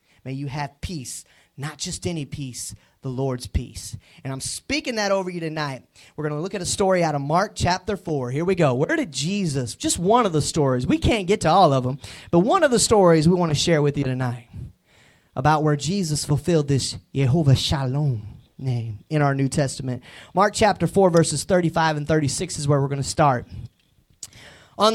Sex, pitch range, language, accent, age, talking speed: male, 125-195 Hz, English, American, 30-49, 205 wpm